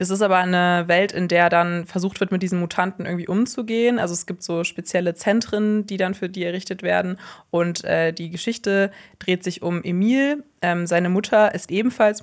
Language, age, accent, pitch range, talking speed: German, 20-39, German, 175-205 Hz, 195 wpm